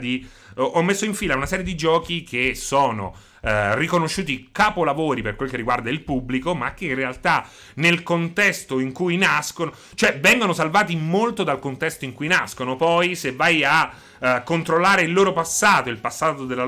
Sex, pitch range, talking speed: male, 125-175 Hz, 175 wpm